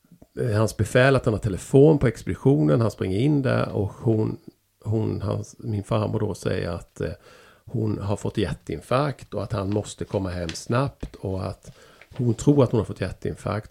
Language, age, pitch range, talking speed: Swedish, 50-69, 100-125 Hz, 185 wpm